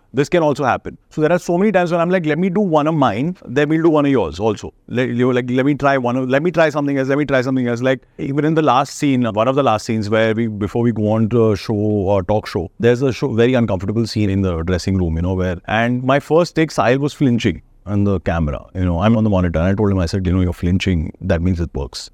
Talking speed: 300 wpm